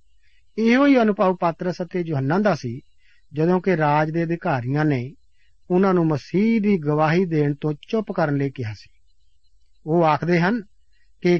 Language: Punjabi